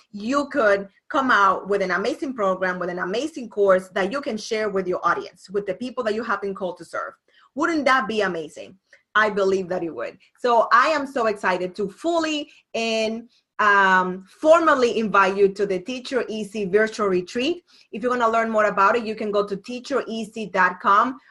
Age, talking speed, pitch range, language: 30-49, 195 wpm, 195-245 Hz, English